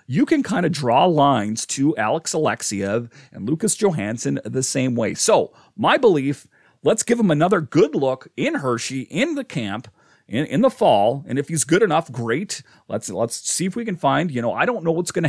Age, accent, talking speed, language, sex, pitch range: 40-59, American, 210 wpm, English, male, 115-165 Hz